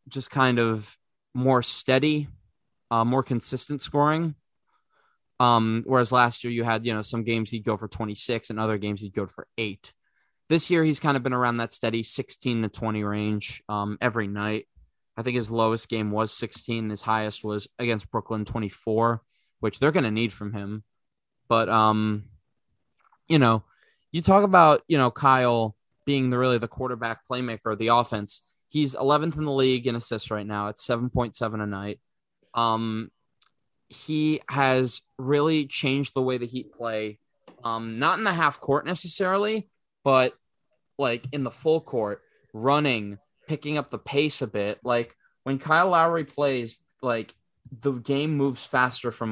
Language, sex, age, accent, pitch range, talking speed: English, male, 20-39, American, 110-140 Hz, 170 wpm